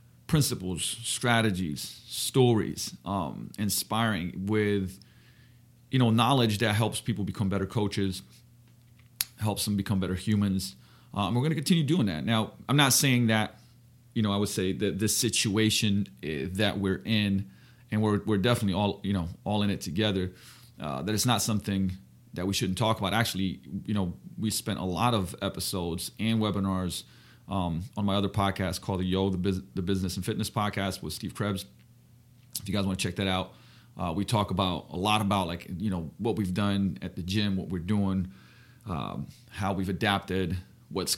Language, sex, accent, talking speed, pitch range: English, male, American, 185 wpm, 95-115 Hz